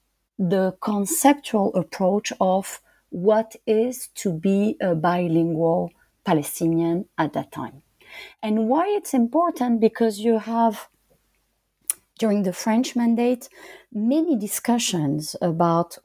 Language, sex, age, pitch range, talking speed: English, female, 40-59, 175-245 Hz, 105 wpm